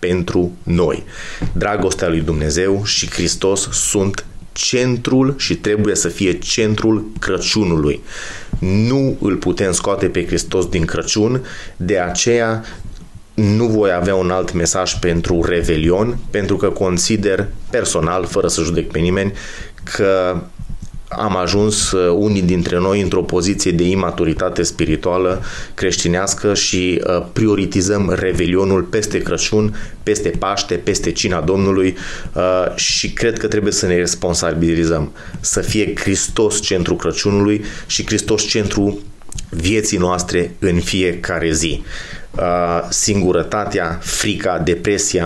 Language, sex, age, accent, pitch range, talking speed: Romanian, male, 30-49, native, 90-105 Hz, 115 wpm